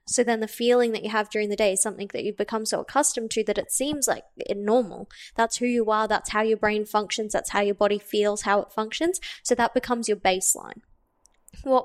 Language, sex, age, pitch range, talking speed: English, female, 10-29, 205-235 Hz, 235 wpm